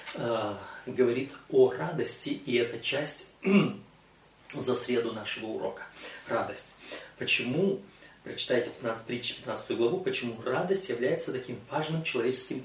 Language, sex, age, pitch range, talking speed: Russian, male, 30-49, 115-140 Hz, 105 wpm